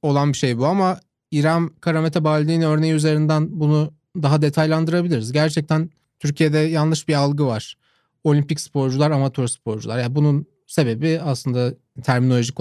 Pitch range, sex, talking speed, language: 130-165 Hz, male, 135 wpm, Turkish